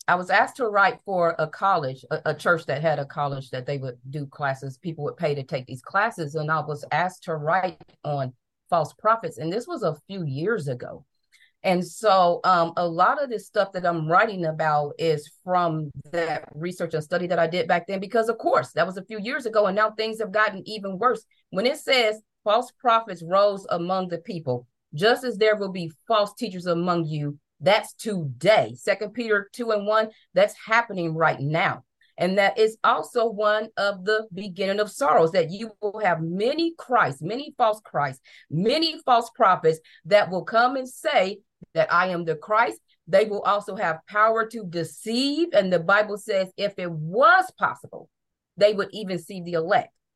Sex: female